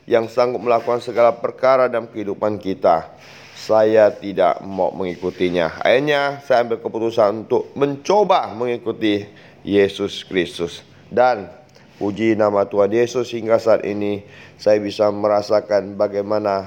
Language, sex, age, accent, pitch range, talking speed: Indonesian, male, 30-49, native, 100-130 Hz, 120 wpm